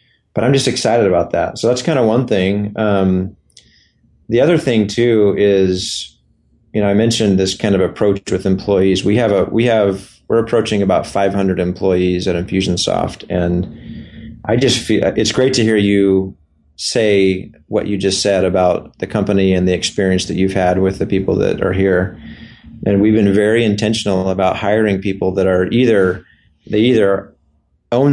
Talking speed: 175 wpm